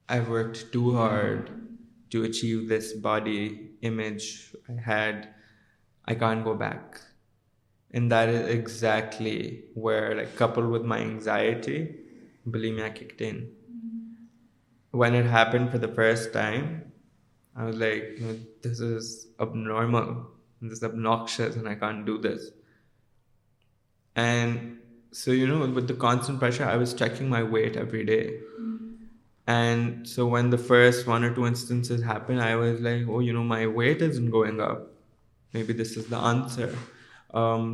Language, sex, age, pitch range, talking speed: Urdu, male, 20-39, 110-120 Hz, 145 wpm